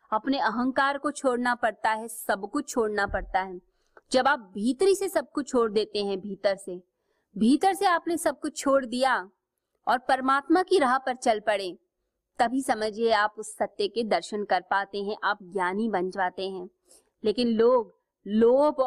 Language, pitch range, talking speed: Hindi, 200-265 Hz, 170 wpm